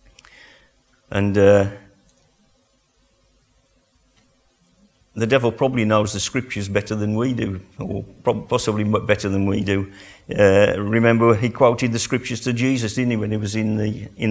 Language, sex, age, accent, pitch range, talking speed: English, male, 50-69, British, 105-125 Hz, 145 wpm